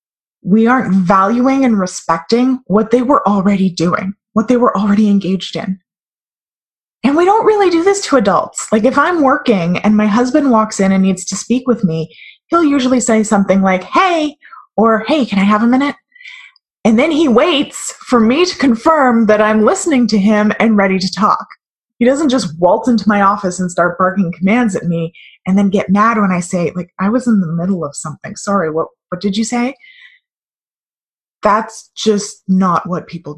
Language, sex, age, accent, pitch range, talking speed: English, female, 20-39, American, 190-245 Hz, 195 wpm